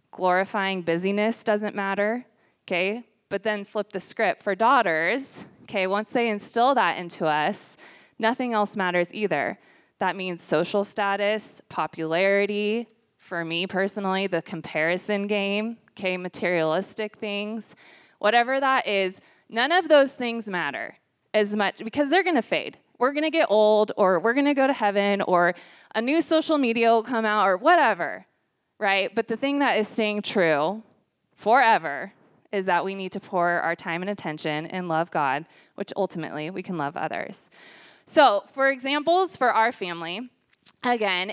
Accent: American